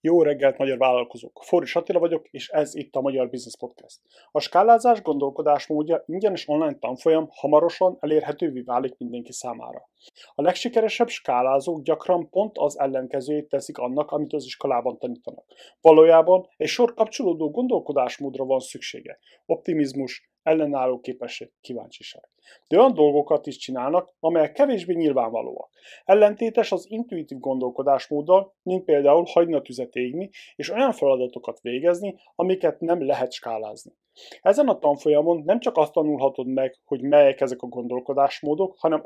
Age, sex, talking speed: 30-49, male, 135 wpm